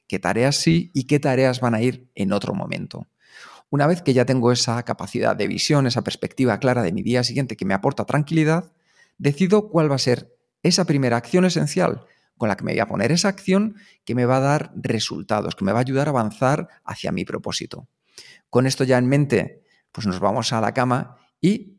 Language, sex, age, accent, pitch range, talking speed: Spanish, male, 40-59, Spanish, 120-165 Hz, 215 wpm